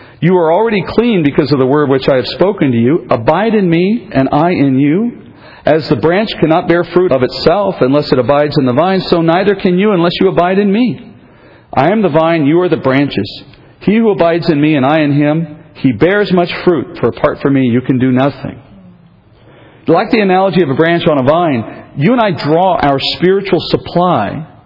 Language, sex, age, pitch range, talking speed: English, male, 50-69, 135-195 Hz, 215 wpm